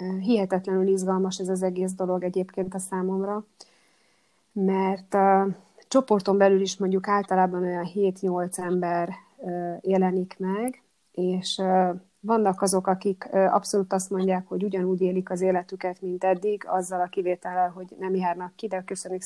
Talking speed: 135 wpm